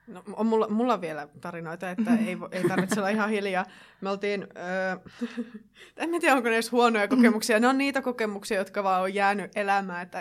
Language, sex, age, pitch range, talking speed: Finnish, female, 20-39, 180-230 Hz, 190 wpm